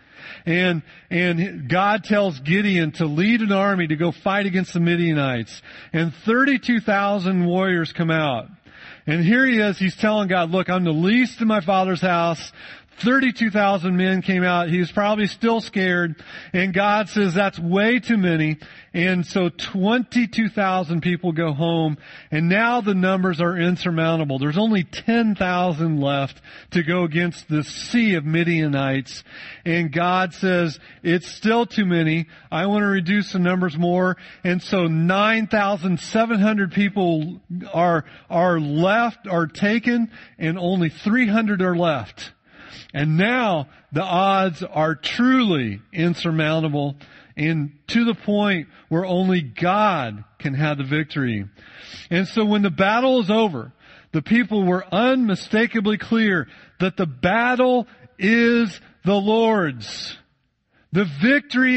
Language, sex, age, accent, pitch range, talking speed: English, male, 40-59, American, 165-215 Hz, 135 wpm